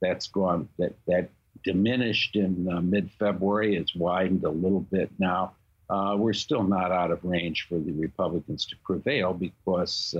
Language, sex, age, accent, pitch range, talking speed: English, male, 60-79, American, 90-105 Hz, 160 wpm